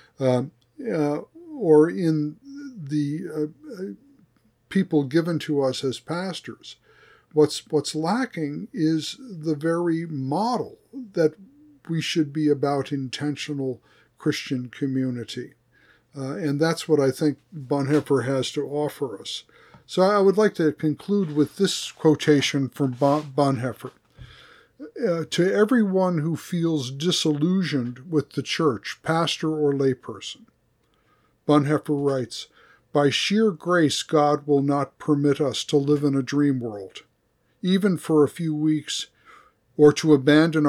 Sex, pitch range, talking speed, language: male, 140-165 Hz, 125 wpm, English